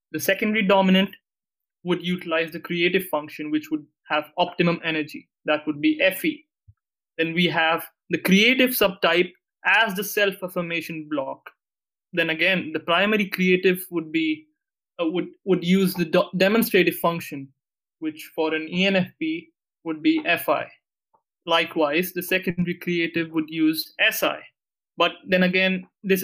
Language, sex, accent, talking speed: English, male, Indian, 135 wpm